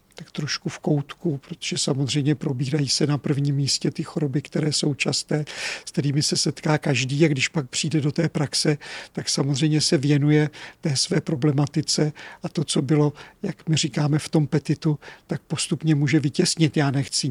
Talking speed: 175 wpm